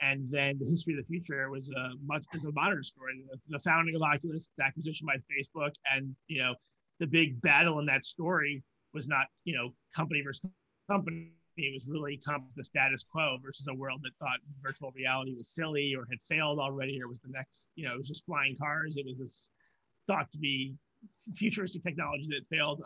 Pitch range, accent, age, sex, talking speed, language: 135-160 Hz, American, 30-49, male, 195 wpm, English